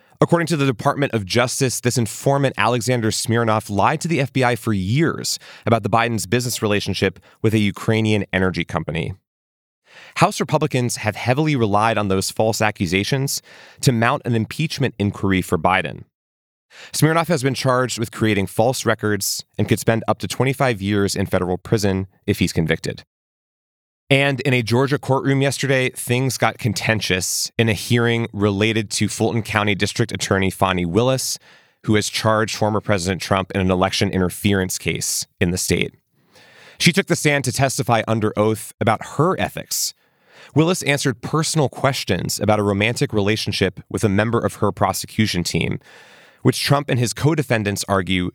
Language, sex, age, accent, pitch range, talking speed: English, male, 30-49, American, 100-130 Hz, 160 wpm